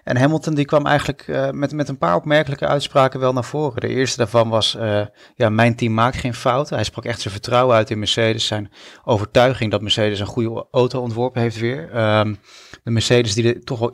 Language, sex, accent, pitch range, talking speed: Dutch, male, Dutch, 105-125 Hz, 220 wpm